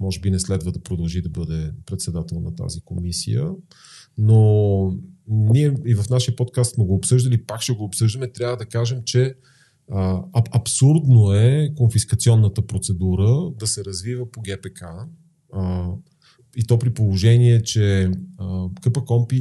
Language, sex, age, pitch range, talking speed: Bulgarian, male, 40-59, 95-120 Hz, 140 wpm